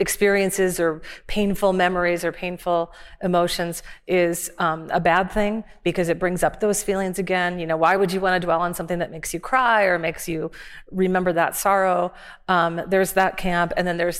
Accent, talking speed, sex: American, 195 wpm, female